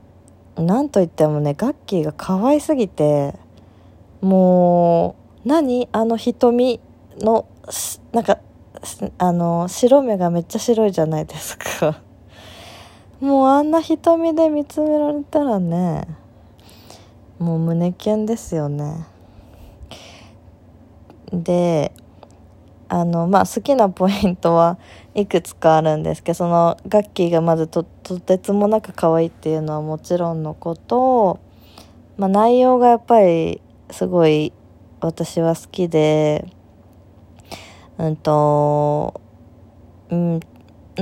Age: 20-39